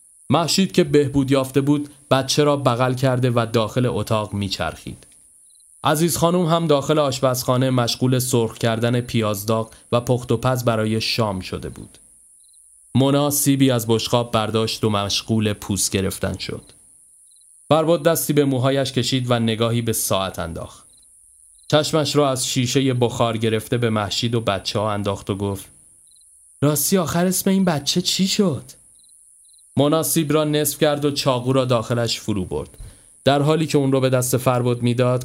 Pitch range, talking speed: 110-145 Hz, 150 wpm